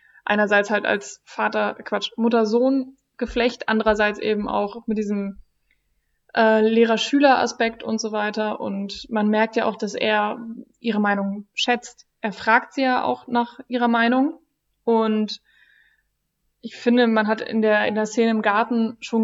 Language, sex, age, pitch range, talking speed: German, female, 20-39, 215-250 Hz, 155 wpm